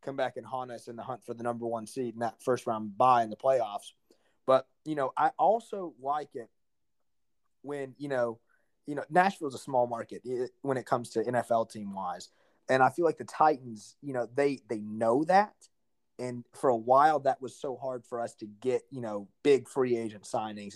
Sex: male